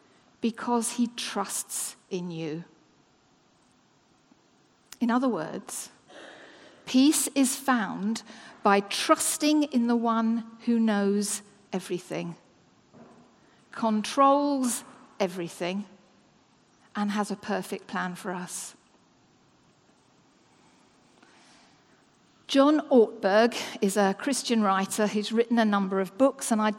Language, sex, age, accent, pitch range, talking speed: English, female, 50-69, British, 200-270 Hz, 95 wpm